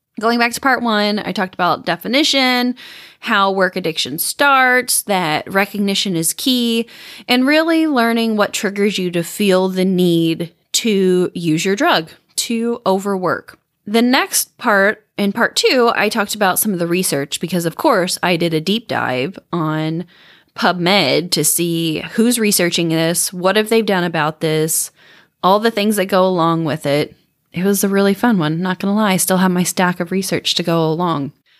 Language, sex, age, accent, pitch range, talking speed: English, female, 20-39, American, 175-230 Hz, 180 wpm